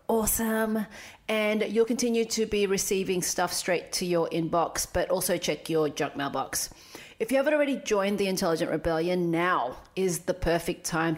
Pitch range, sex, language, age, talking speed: 160-205 Hz, female, English, 30-49, 165 wpm